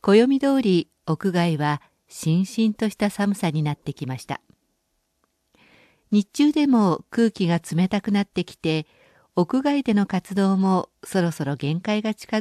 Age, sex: 50-69, female